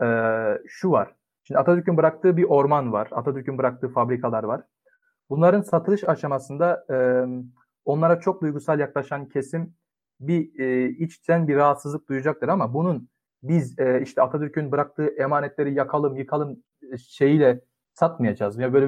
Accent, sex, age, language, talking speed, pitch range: native, male, 40-59, Turkish, 120 wpm, 135-170 Hz